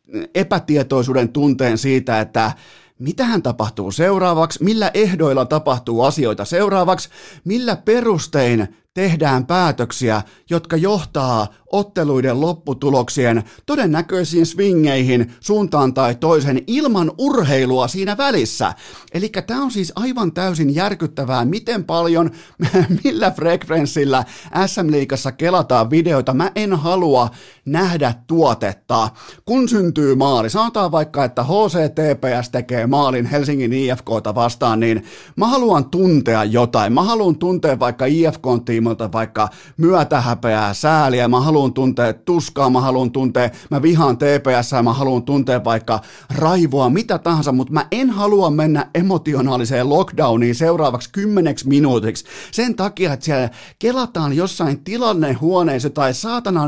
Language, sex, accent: Finnish, male, native